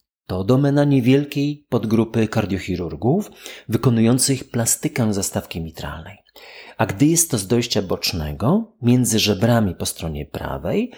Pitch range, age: 105-145 Hz, 30-49